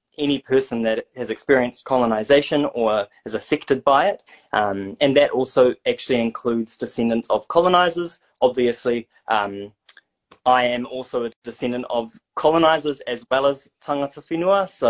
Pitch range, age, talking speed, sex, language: 115-150 Hz, 20-39, 140 wpm, male, English